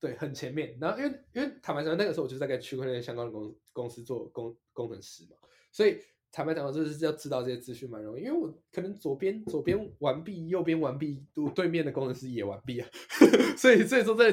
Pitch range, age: 115-160 Hz, 20-39